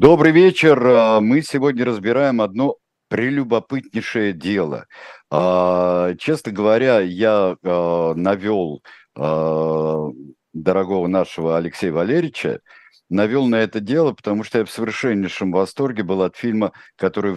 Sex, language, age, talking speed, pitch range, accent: male, Russian, 50-69, 105 wpm, 90-110 Hz, native